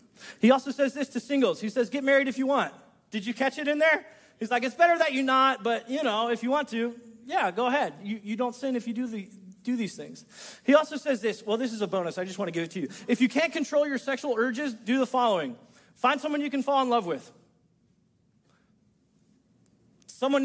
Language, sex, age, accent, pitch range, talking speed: English, male, 30-49, American, 180-250 Hz, 245 wpm